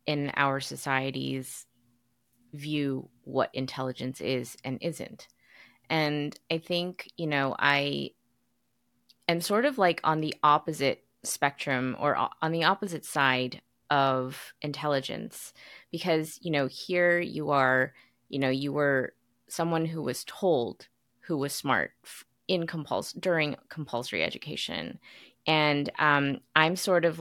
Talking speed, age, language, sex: 125 wpm, 20-39, English, female